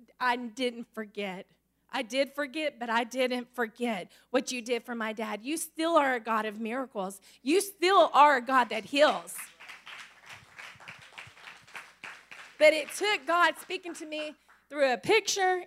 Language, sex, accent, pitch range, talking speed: English, female, American, 230-275 Hz, 155 wpm